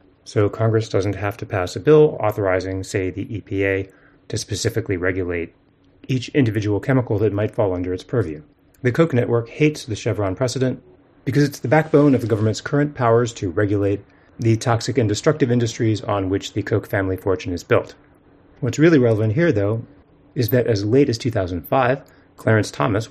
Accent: American